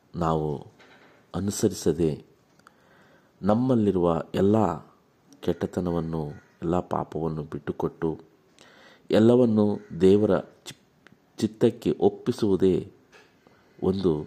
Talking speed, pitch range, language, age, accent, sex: 55 wpm, 85-130 Hz, Kannada, 50-69, native, male